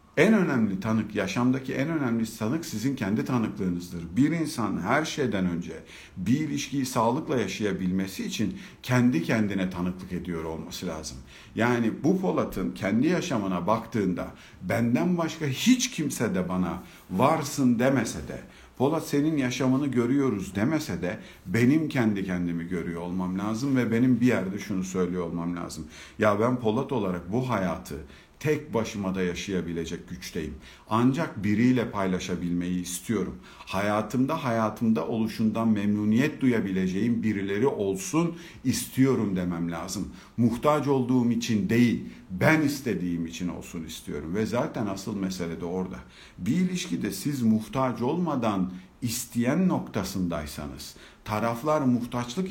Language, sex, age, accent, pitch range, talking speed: Turkish, male, 50-69, native, 90-130 Hz, 125 wpm